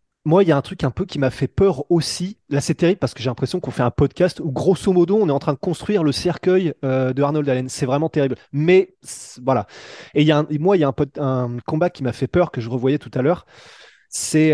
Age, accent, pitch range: 20-39, French, 135-180 Hz